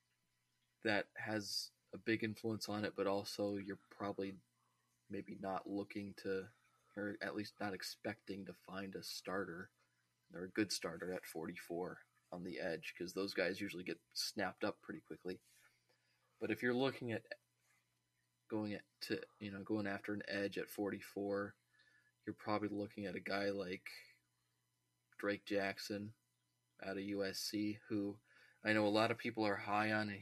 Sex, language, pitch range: male, English, 100-110 Hz